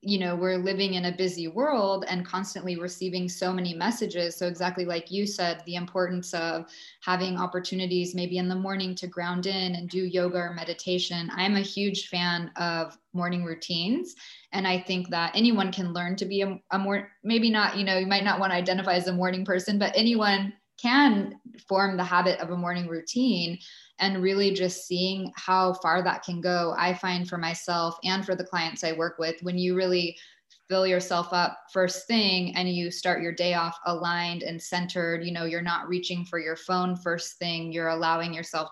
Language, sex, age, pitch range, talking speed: English, female, 20-39, 175-190 Hz, 205 wpm